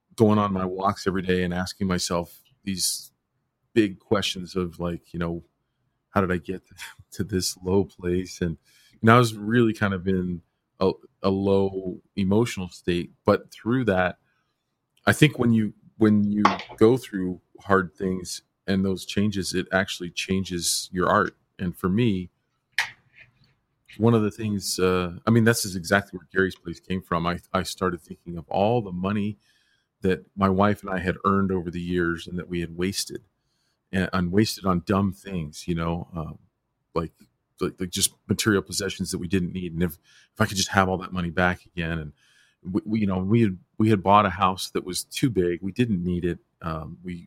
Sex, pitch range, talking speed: male, 90-100 Hz, 195 wpm